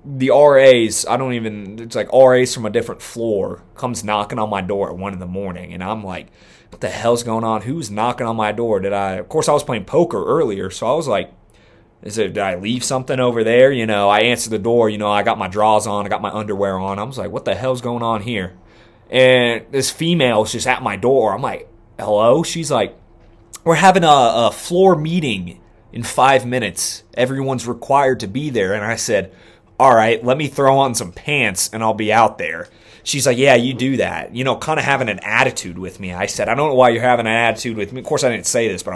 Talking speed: 245 wpm